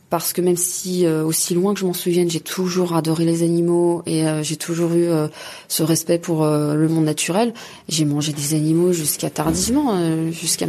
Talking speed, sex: 210 wpm, female